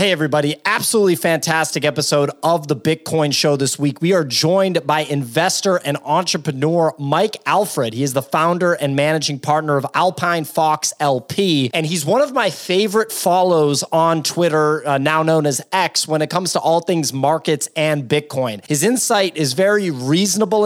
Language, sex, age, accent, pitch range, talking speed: English, male, 30-49, American, 145-180 Hz, 170 wpm